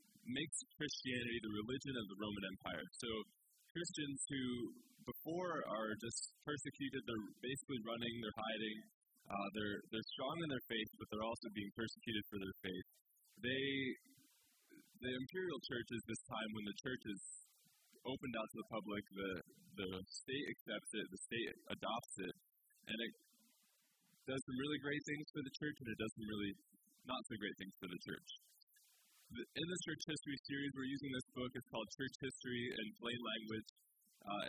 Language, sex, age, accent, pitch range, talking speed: English, male, 20-39, American, 110-135 Hz, 170 wpm